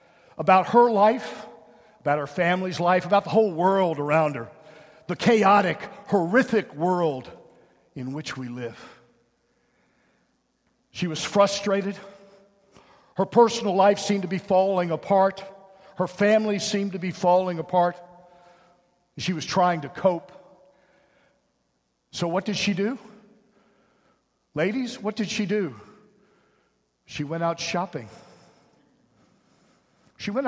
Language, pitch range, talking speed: English, 155-205 Hz, 120 wpm